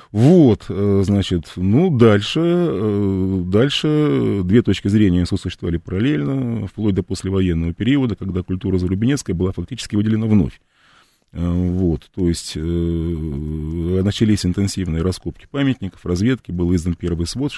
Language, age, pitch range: Russian, 20-39, 90-110 Hz